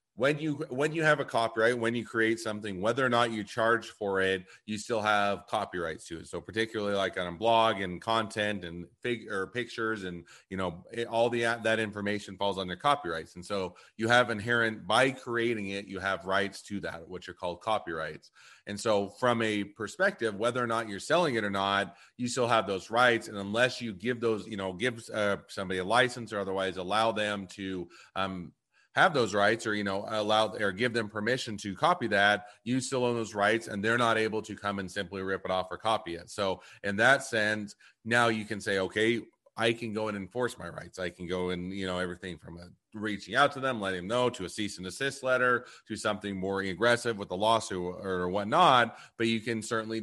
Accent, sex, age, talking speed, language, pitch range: American, male, 30-49, 220 wpm, English, 95-115 Hz